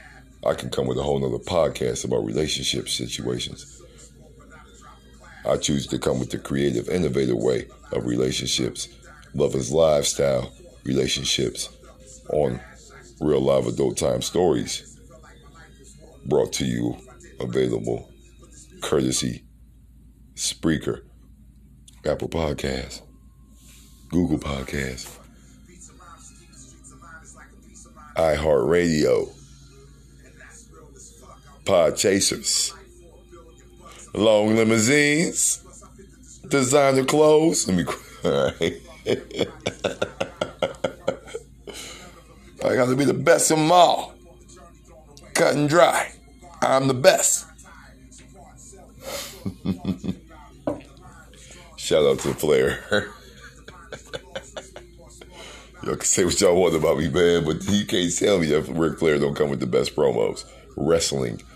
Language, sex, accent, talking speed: English, male, American, 90 wpm